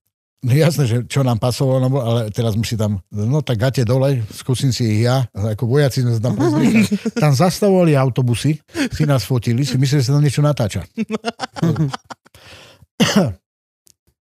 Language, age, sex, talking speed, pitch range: Slovak, 60-79, male, 165 wpm, 115-150 Hz